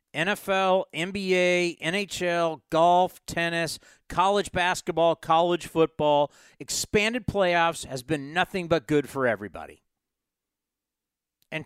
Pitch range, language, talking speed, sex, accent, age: 150-215 Hz, English, 100 wpm, male, American, 50-69